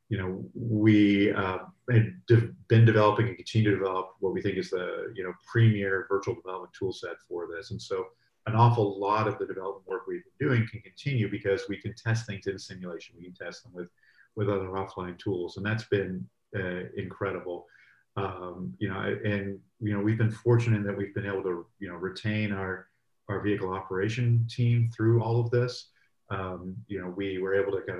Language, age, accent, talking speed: English, 40-59, American, 200 wpm